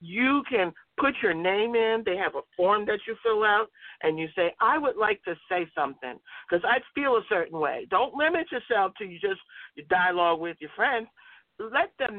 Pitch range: 165-240 Hz